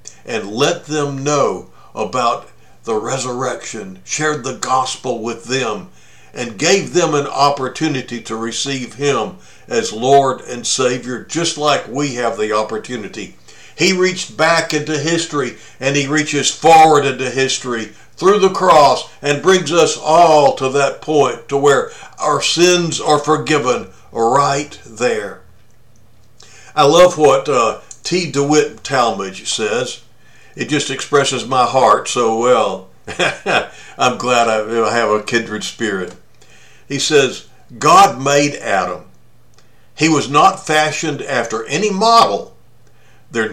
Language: English